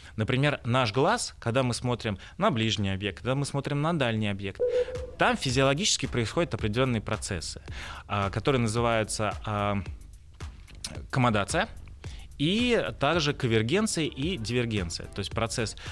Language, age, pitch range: Russian, 20-39, 105-140 Hz